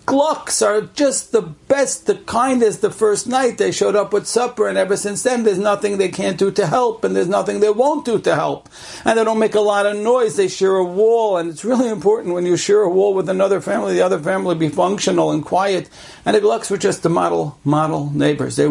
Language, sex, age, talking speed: English, male, 60-79, 240 wpm